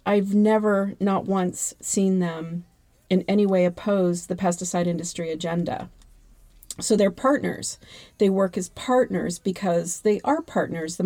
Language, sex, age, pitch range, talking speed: English, female, 40-59, 180-215 Hz, 140 wpm